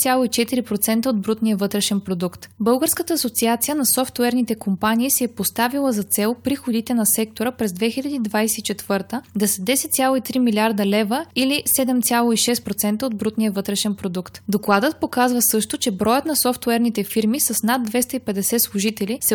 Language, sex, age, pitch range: Bulgarian, female, 20-39, 210-250 Hz